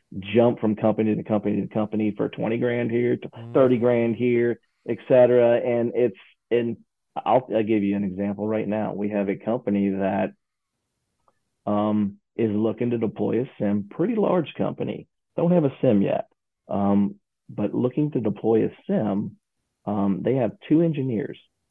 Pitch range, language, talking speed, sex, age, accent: 100-120 Hz, English, 165 wpm, male, 40-59, American